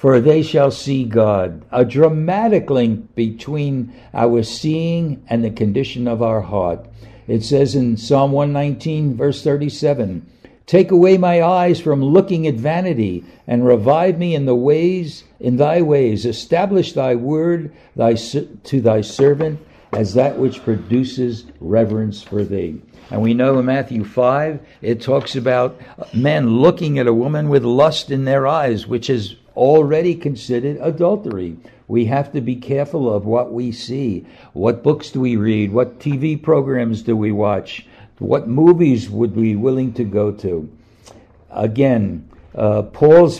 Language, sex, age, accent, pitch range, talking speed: English, male, 60-79, American, 115-150 Hz, 155 wpm